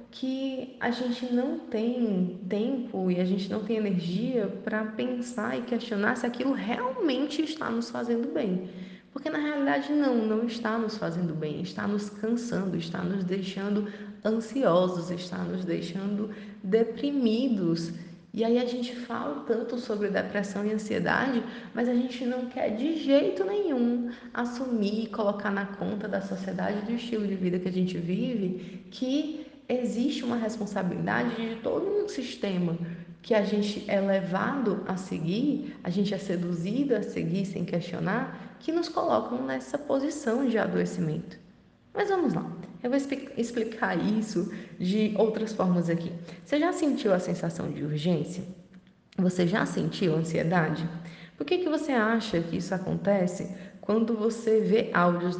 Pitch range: 185-245 Hz